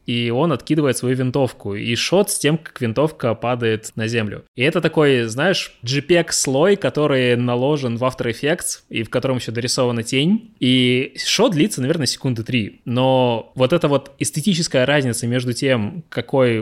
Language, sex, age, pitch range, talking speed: Russian, male, 20-39, 110-135 Hz, 165 wpm